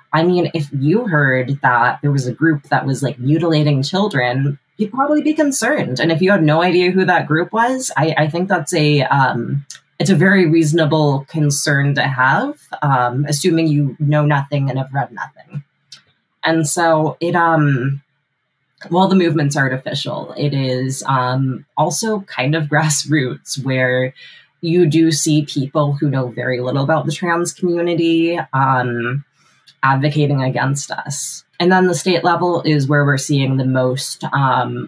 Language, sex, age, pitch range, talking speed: English, female, 20-39, 130-160 Hz, 165 wpm